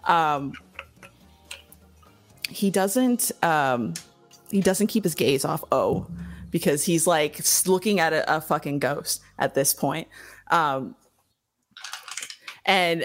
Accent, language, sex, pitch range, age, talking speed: American, English, female, 155-210 Hz, 20-39, 115 wpm